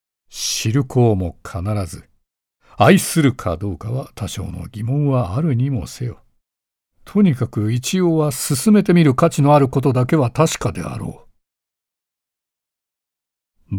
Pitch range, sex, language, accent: 90-120 Hz, male, Japanese, native